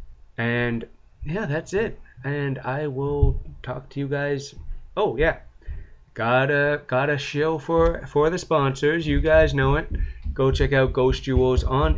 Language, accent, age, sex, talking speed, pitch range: English, American, 20-39, male, 160 wpm, 120-145 Hz